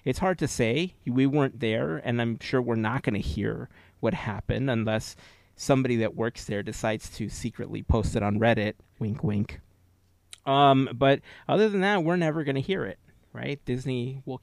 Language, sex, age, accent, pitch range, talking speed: English, male, 30-49, American, 110-135 Hz, 185 wpm